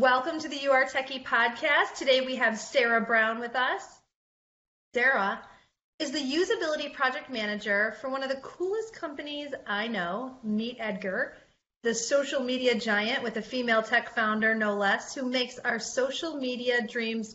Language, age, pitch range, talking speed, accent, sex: English, 30-49, 210-270 Hz, 160 wpm, American, female